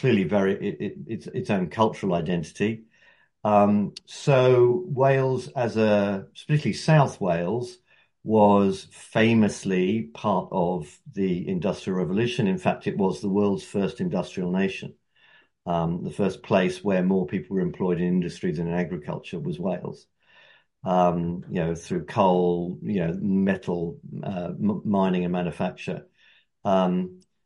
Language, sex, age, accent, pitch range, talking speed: English, male, 50-69, British, 90-120 Hz, 140 wpm